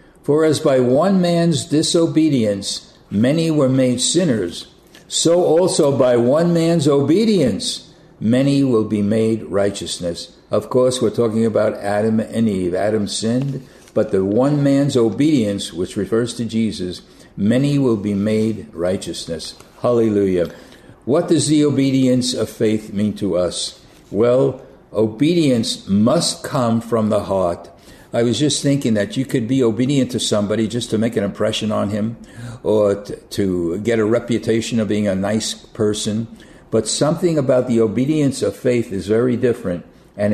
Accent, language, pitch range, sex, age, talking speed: American, English, 105-140 Hz, male, 60-79, 150 wpm